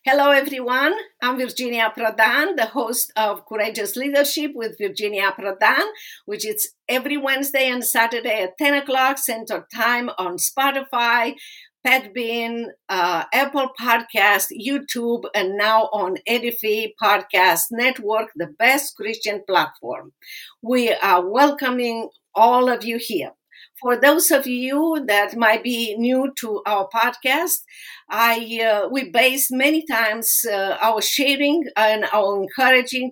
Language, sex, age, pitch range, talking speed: English, female, 50-69, 210-265 Hz, 130 wpm